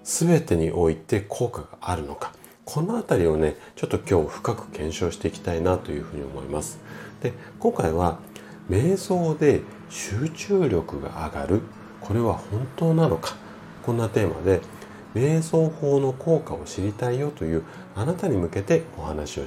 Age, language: 40-59, Japanese